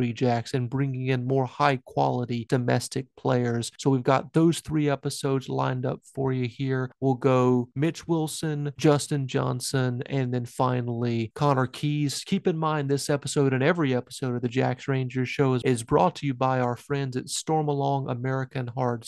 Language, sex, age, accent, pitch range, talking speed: English, male, 30-49, American, 130-155 Hz, 175 wpm